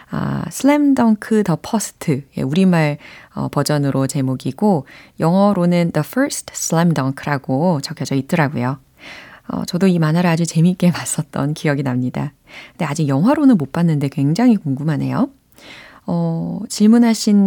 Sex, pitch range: female, 140-205 Hz